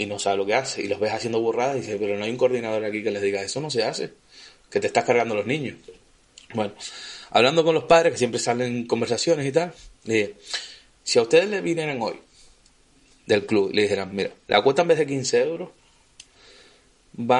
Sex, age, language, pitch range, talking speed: male, 20-39, Spanish, 115-170 Hz, 230 wpm